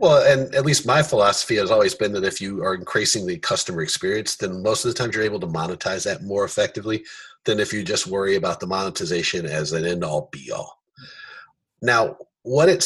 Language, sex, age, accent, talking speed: English, male, 30-49, American, 205 wpm